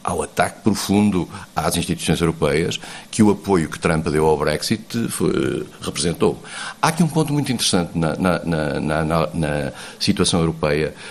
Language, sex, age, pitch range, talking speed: Portuguese, male, 50-69, 80-110 Hz, 135 wpm